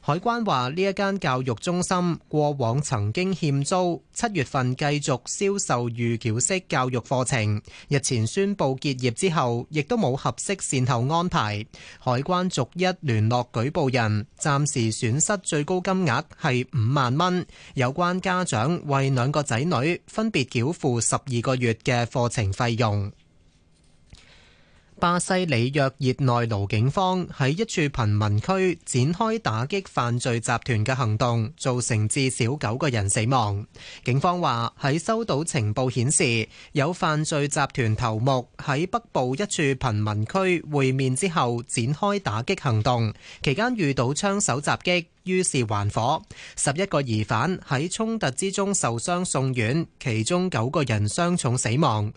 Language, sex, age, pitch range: Chinese, male, 20-39, 115-175 Hz